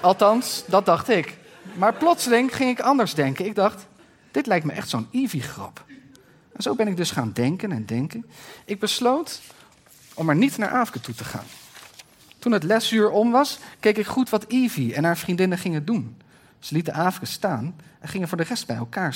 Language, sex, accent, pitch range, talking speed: Dutch, male, Dutch, 150-215 Hz, 200 wpm